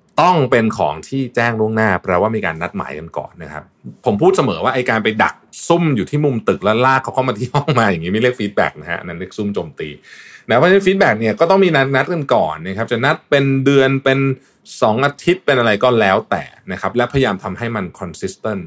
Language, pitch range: Thai, 95-135 Hz